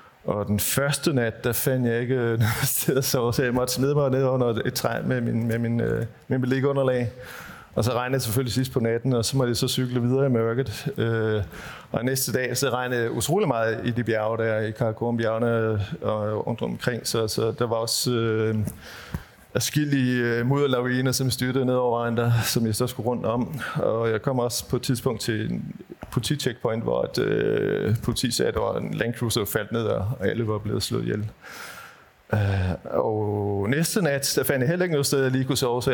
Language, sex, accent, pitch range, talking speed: Danish, male, native, 110-130 Hz, 210 wpm